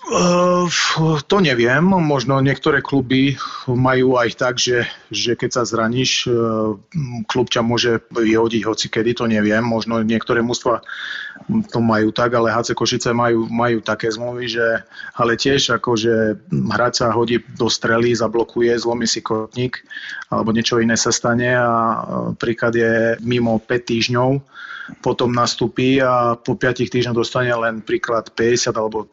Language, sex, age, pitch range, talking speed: Slovak, male, 30-49, 110-125 Hz, 140 wpm